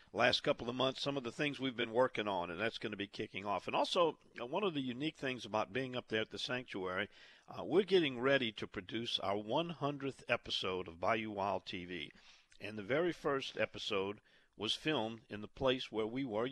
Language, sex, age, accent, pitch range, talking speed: English, male, 50-69, American, 100-130 Hz, 215 wpm